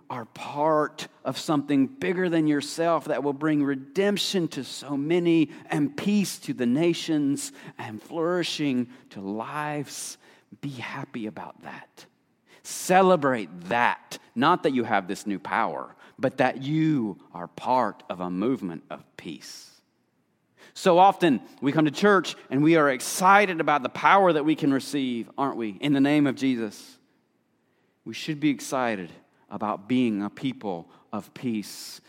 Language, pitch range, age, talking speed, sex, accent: English, 115-165 Hz, 40-59, 150 wpm, male, American